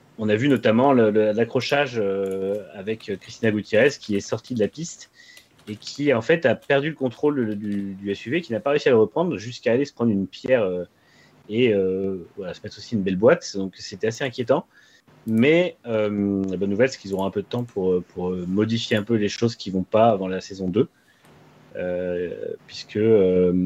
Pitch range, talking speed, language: 95-125 Hz, 210 wpm, French